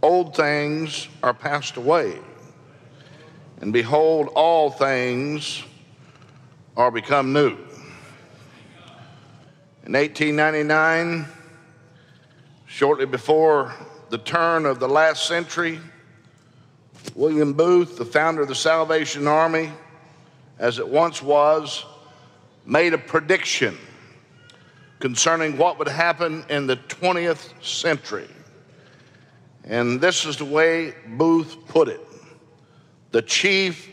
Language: English